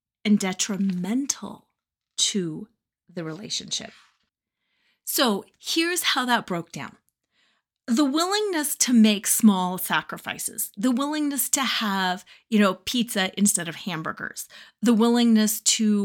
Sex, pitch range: female, 195-255 Hz